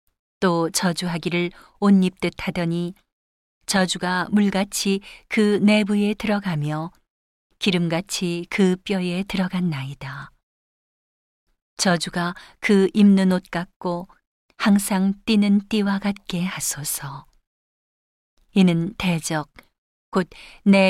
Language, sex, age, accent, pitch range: Korean, female, 40-59, native, 170-195 Hz